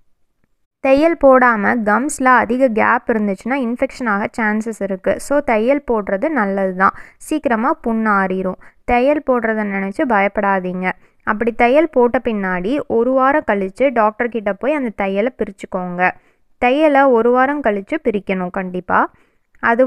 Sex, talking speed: female, 120 wpm